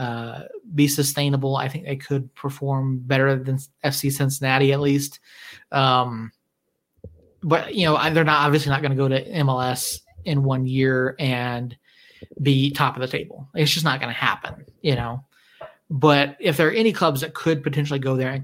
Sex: male